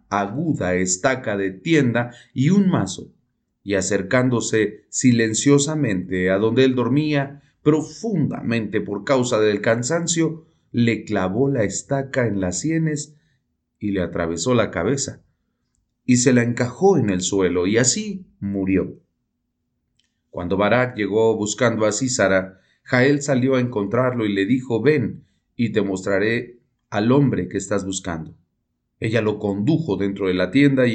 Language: English